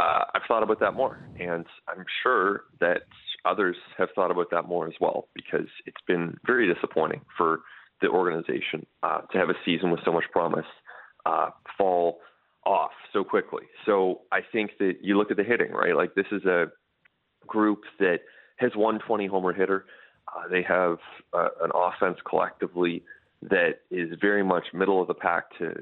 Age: 30-49